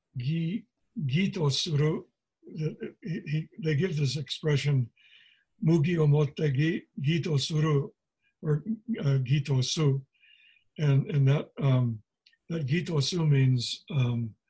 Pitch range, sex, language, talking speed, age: 135-155 Hz, male, English, 115 wpm, 60-79